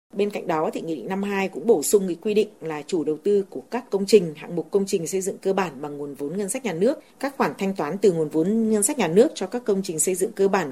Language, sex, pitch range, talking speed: Vietnamese, female, 165-215 Hz, 310 wpm